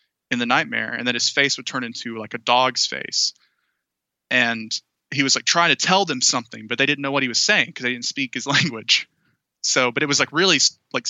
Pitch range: 125-165 Hz